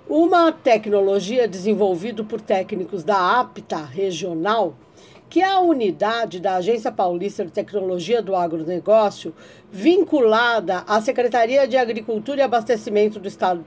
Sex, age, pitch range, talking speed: female, 50-69, 190-260 Hz, 125 wpm